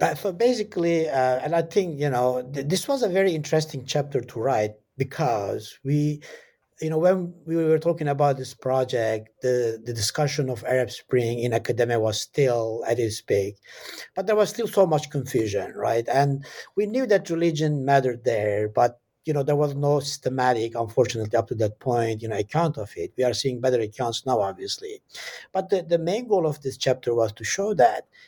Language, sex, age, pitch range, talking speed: English, male, 60-79, 125-160 Hz, 195 wpm